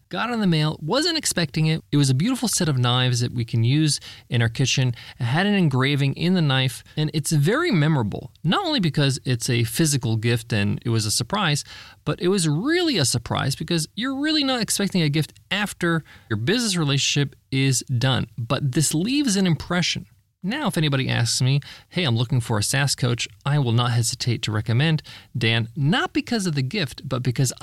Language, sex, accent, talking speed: English, male, American, 205 wpm